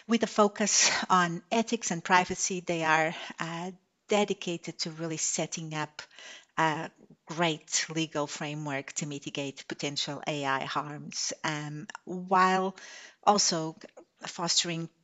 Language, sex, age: English, female, 50-69